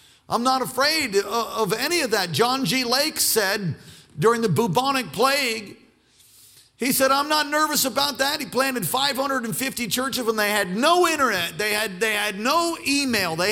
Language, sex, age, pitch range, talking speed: English, male, 50-69, 225-290 Hz, 170 wpm